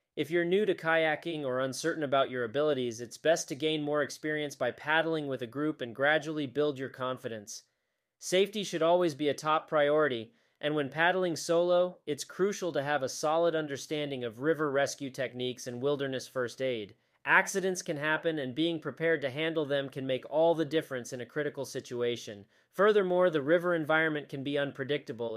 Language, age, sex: English, 30-49, male